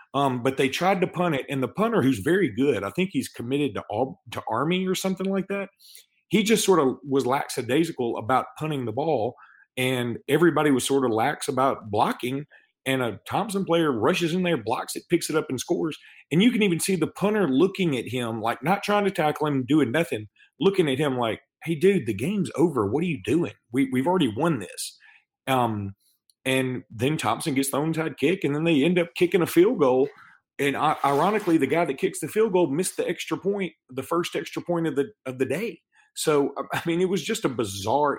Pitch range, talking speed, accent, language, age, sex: 115-175 Hz, 220 wpm, American, English, 40-59, male